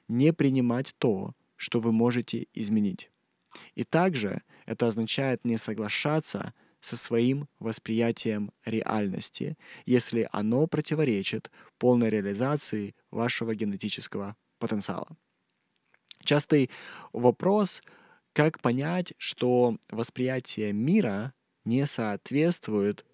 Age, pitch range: 20-39, 105-125 Hz